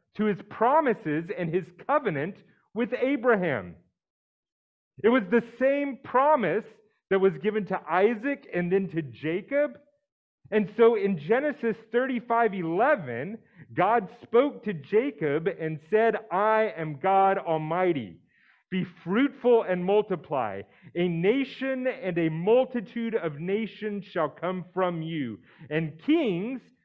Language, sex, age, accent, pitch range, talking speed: English, male, 40-59, American, 160-230 Hz, 125 wpm